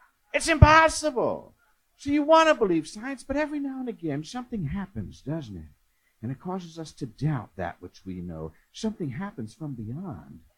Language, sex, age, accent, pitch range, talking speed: English, male, 50-69, American, 135-215 Hz, 175 wpm